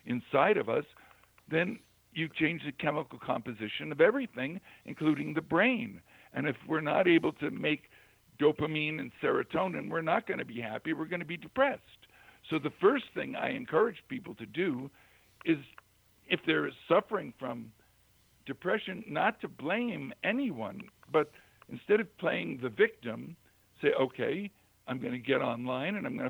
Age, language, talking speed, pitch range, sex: 60-79, English, 160 wpm, 120-175 Hz, male